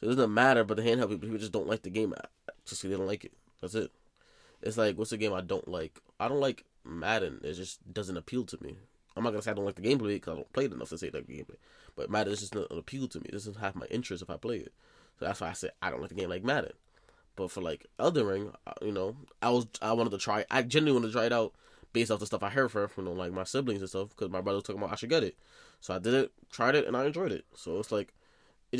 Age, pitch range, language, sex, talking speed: 20-39, 100-125 Hz, English, male, 310 wpm